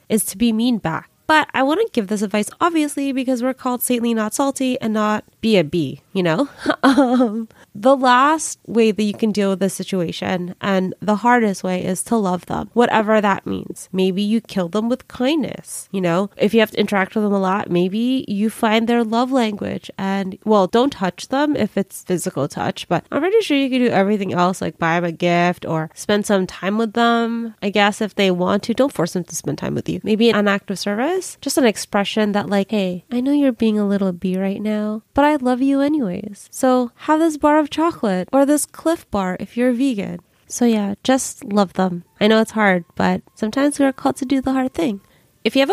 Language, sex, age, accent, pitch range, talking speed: English, female, 20-39, American, 195-260 Hz, 230 wpm